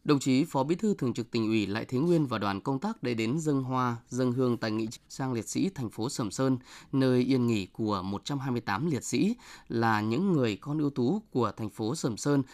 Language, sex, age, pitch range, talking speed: Vietnamese, male, 20-39, 115-155 Hz, 240 wpm